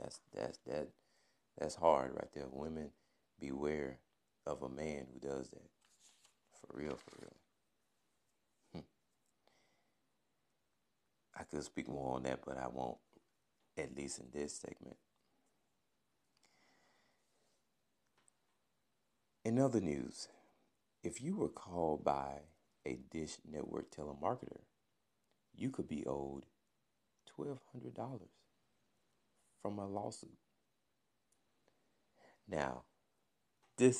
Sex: male